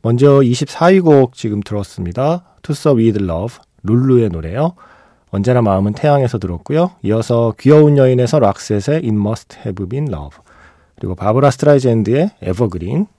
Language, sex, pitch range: Korean, male, 95-140 Hz